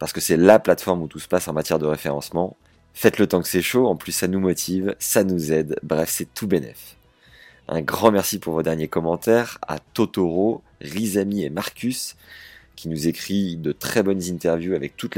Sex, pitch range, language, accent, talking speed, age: male, 80-95 Hz, French, French, 205 wpm, 30-49